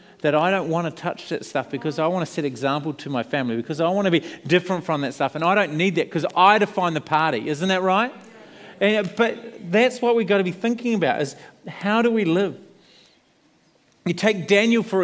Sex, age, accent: male, 40-59, Australian